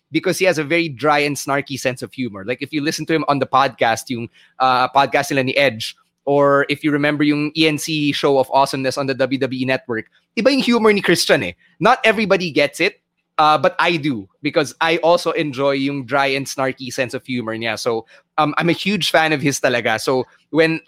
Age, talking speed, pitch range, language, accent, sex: 20-39, 225 wpm, 145-180 Hz, English, Filipino, male